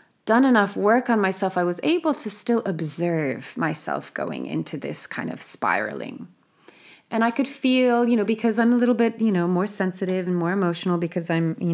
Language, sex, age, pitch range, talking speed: English, female, 30-49, 170-235 Hz, 200 wpm